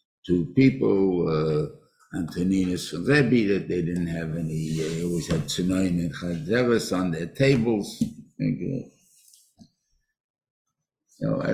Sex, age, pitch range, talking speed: male, 60-79, 85-115 Hz, 120 wpm